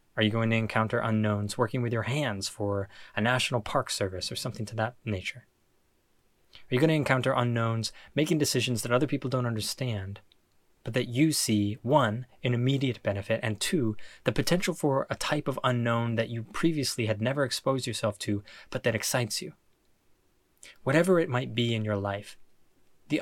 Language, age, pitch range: English, 20-39, 105-135 Hz